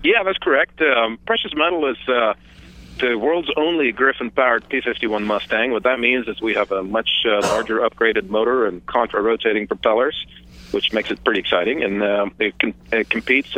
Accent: American